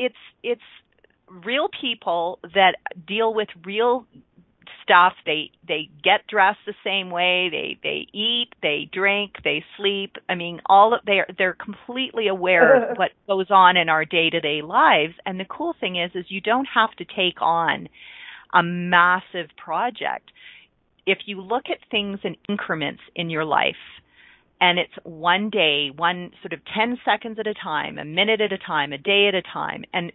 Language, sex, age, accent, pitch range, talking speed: English, female, 40-59, American, 170-220 Hz, 175 wpm